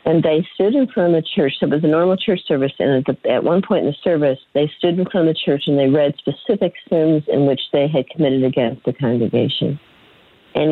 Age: 50-69